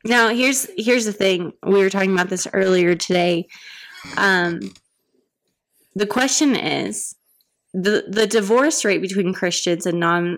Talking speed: 140 wpm